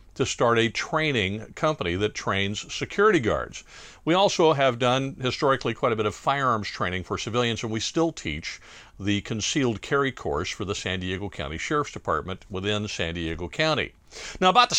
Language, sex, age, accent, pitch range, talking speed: English, male, 50-69, American, 115-170 Hz, 180 wpm